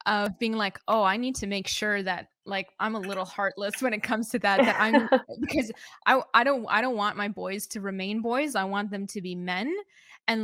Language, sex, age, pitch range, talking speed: English, female, 20-39, 195-225 Hz, 235 wpm